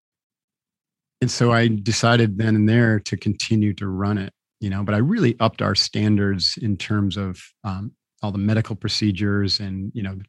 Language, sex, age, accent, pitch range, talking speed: English, male, 40-59, American, 100-115 Hz, 185 wpm